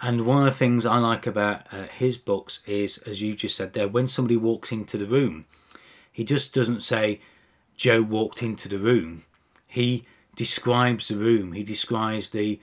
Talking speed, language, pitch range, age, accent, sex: 185 wpm, English, 100-125 Hz, 30-49, British, male